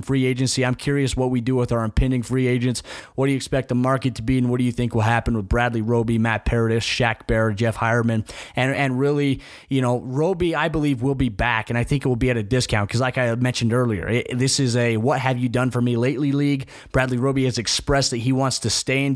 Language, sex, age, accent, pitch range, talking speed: English, male, 20-39, American, 120-135 Hz, 260 wpm